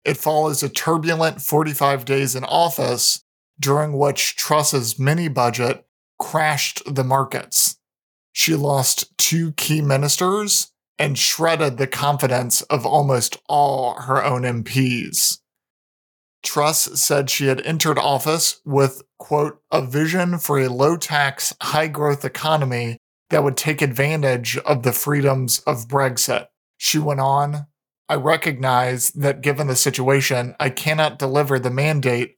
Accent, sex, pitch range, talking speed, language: American, male, 130-150 Hz, 125 wpm, English